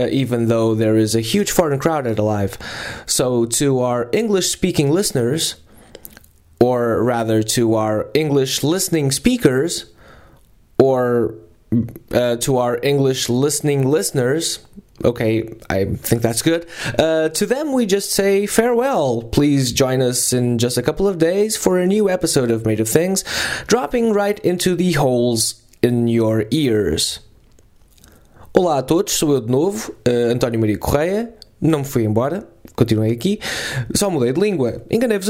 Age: 20-39